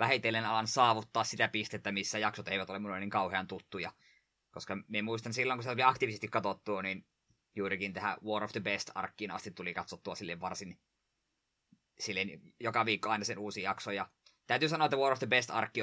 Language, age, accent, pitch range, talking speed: Finnish, 20-39, native, 100-125 Hz, 180 wpm